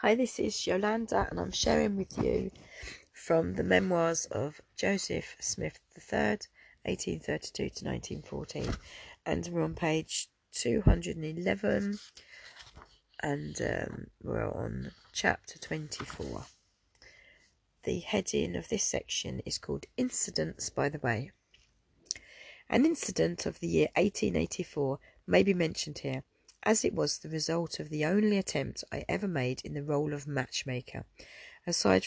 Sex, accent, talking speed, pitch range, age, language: female, British, 125 wpm, 120-175 Hz, 40-59, English